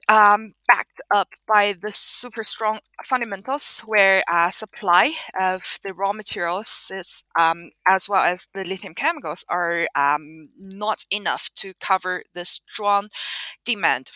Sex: female